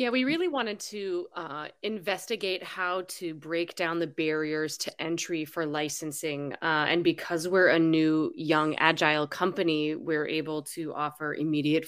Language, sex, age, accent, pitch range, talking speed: English, female, 30-49, American, 155-195 Hz, 155 wpm